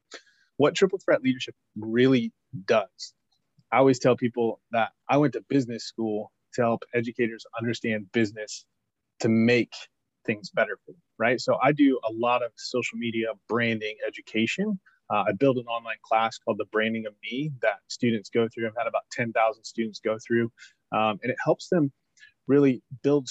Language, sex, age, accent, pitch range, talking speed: English, male, 30-49, American, 110-130 Hz, 170 wpm